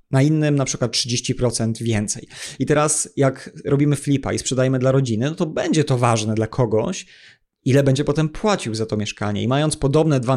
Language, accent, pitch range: Polish, native, 120-145 Hz